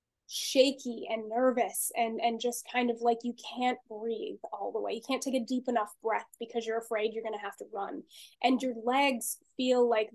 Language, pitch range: English, 225-270 Hz